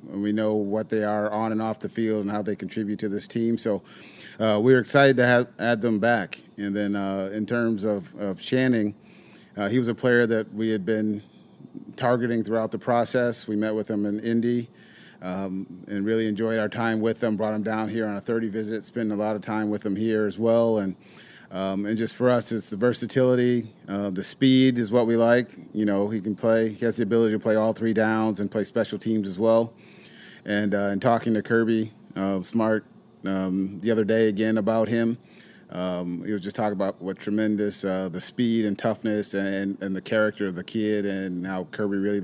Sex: male